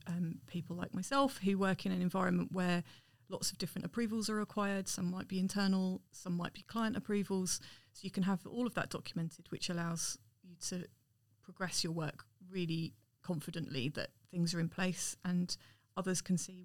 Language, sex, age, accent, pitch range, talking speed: English, female, 30-49, British, 165-190 Hz, 185 wpm